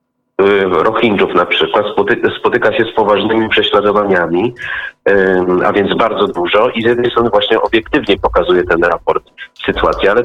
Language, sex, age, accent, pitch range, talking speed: Polish, male, 40-59, native, 95-110 Hz, 135 wpm